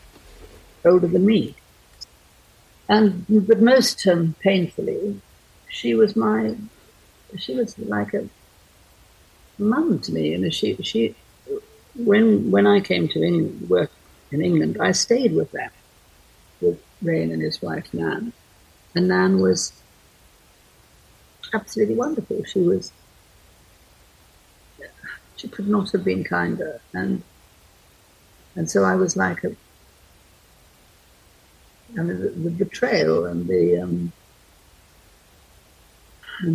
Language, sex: English, female